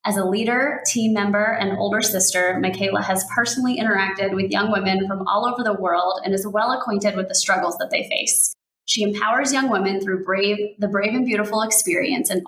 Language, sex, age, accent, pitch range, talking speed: English, female, 20-39, American, 190-235 Hz, 200 wpm